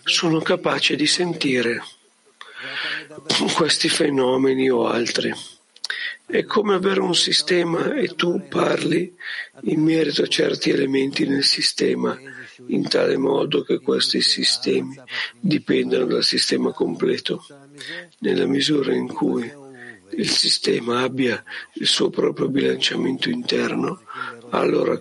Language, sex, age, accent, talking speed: Italian, male, 50-69, native, 110 wpm